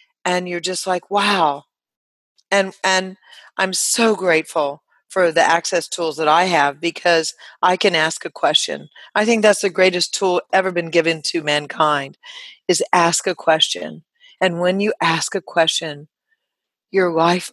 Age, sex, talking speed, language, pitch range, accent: 40-59, female, 160 wpm, English, 160-210 Hz, American